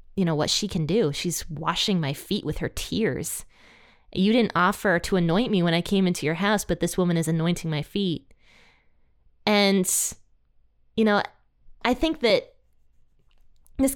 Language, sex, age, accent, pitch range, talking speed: English, female, 20-39, American, 170-215 Hz, 170 wpm